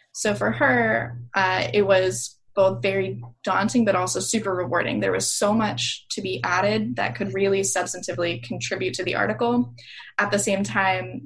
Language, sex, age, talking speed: English, female, 10-29, 170 wpm